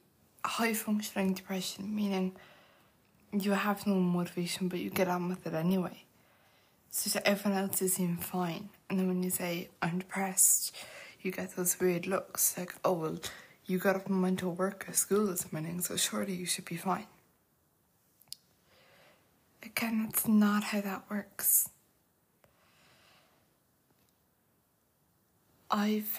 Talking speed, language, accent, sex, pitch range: 135 wpm, English, British, female, 185-205 Hz